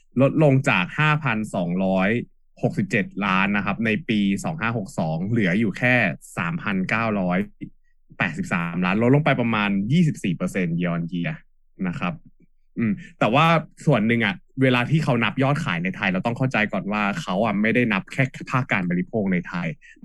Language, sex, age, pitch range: Thai, male, 20-39, 100-150 Hz